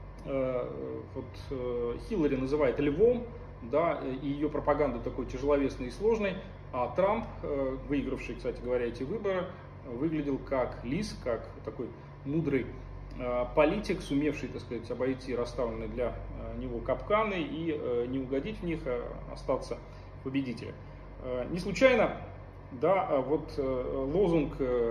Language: Russian